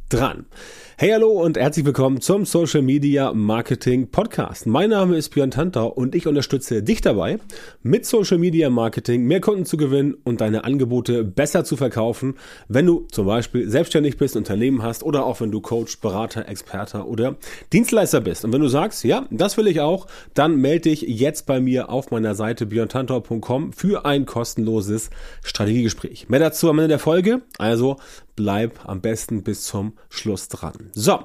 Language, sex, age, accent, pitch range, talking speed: German, male, 30-49, German, 115-160 Hz, 175 wpm